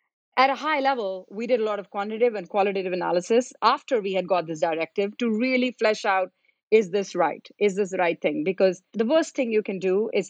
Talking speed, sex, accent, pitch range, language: 225 wpm, female, Indian, 180-225 Hz, English